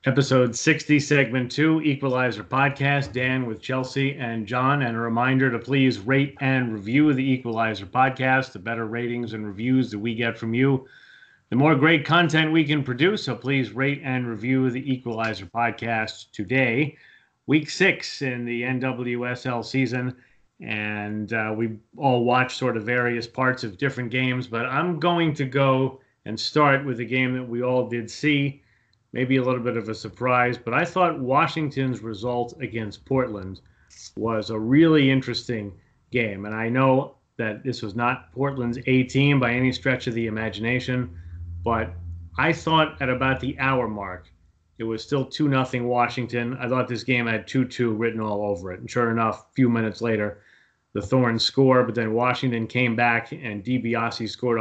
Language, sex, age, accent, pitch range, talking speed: English, male, 30-49, American, 115-135 Hz, 170 wpm